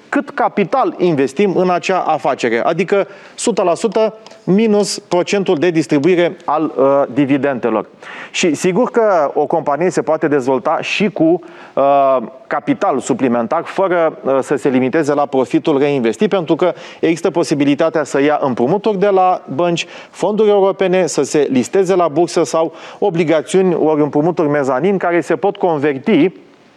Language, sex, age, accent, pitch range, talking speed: Romanian, male, 30-49, native, 145-195 Hz, 130 wpm